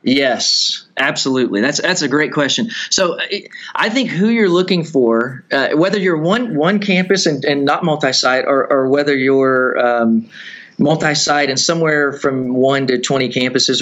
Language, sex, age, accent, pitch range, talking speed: English, male, 30-49, American, 130-160 Hz, 165 wpm